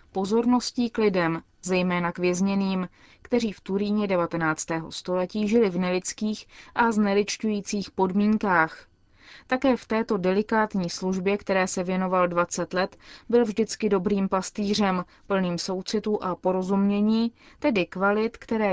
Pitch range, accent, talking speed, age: 185-215 Hz, native, 120 wpm, 20-39